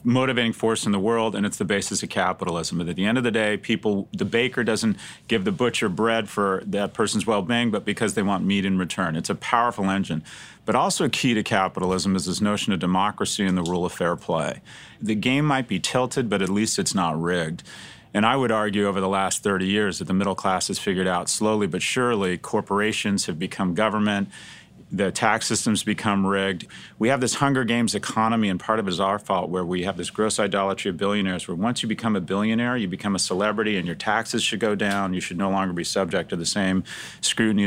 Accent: American